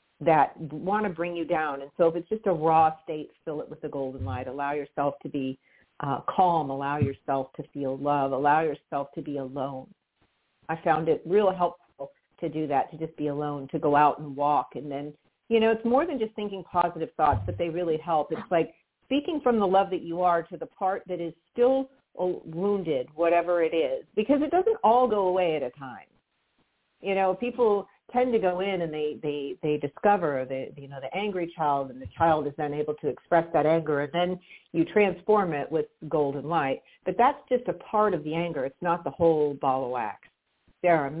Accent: American